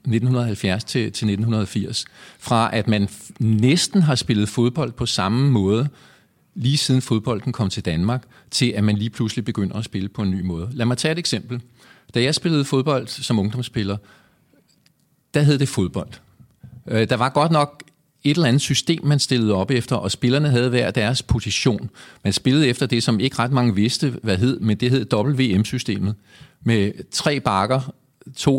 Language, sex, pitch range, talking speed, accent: Danish, male, 105-130 Hz, 175 wpm, native